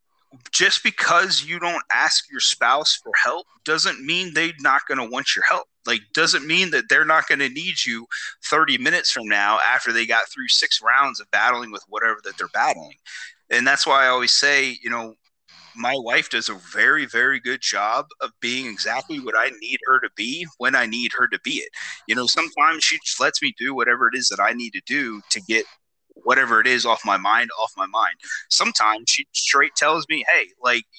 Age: 30-49